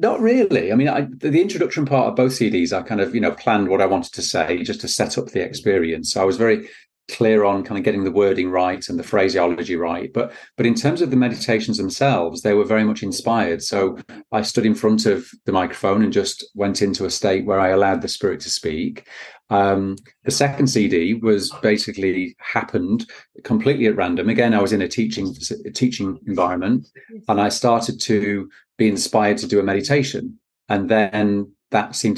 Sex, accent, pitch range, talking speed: male, British, 100-125 Hz, 205 wpm